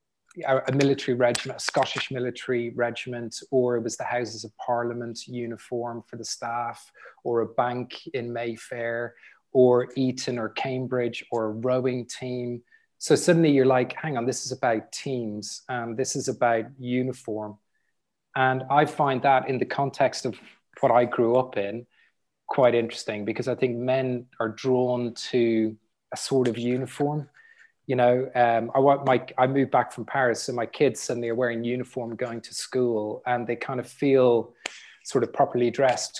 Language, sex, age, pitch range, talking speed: English, male, 20-39, 120-130 Hz, 170 wpm